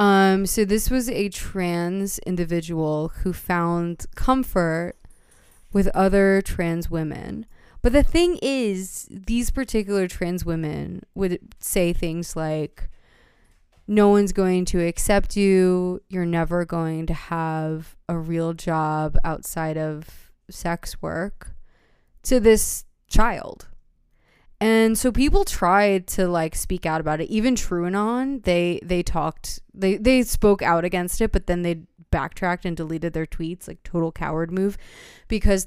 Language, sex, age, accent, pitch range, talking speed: English, female, 20-39, American, 165-200 Hz, 135 wpm